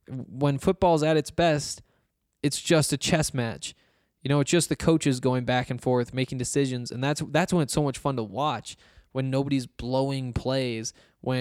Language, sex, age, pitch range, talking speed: English, male, 20-39, 125-150 Hz, 195 wpm